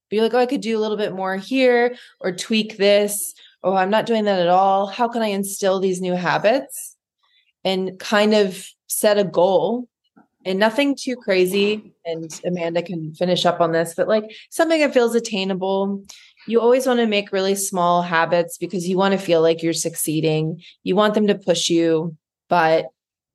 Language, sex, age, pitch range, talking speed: English, female, 20-39, 175-215 Hz, 190 wpm